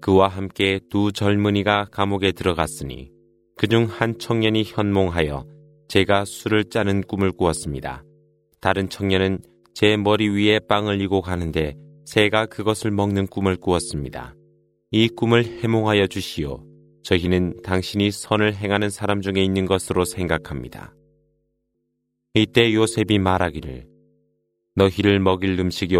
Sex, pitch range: male, 85-105 Hz